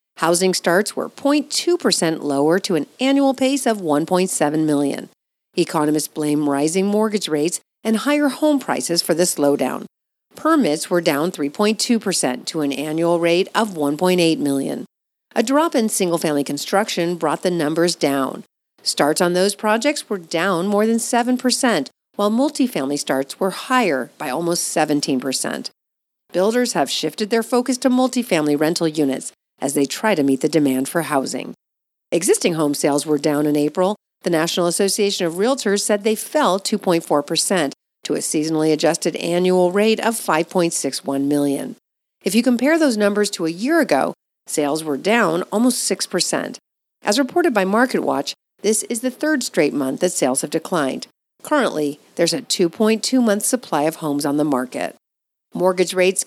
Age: 40-59